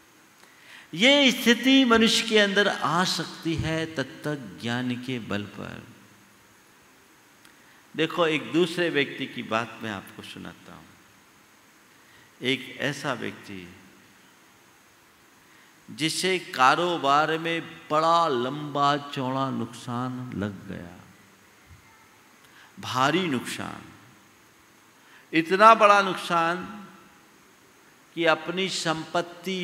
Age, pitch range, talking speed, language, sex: 50-69, 110-165 Hz, 85 wpm, Hindi, male